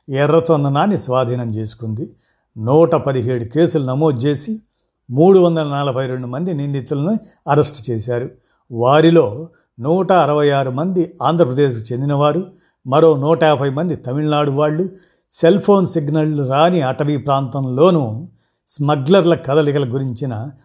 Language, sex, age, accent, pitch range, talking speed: Telugu, male, 50-69, native, 130-160 Hz, 110 wpm